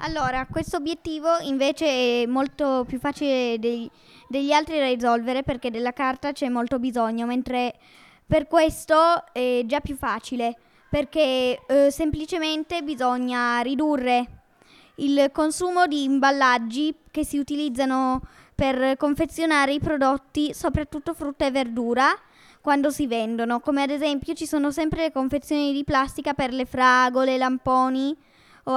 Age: 10-29